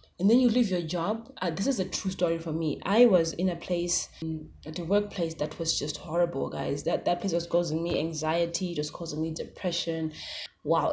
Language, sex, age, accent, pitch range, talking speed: English, female, 20-39, South African, 165-200 Hz, 215 wpm